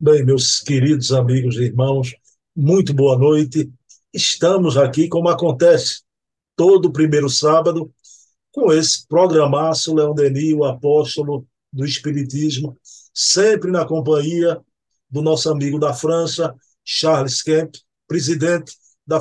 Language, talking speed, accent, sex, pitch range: Portuguese, 115 wpm, Brazilian, male, 140-165 Hz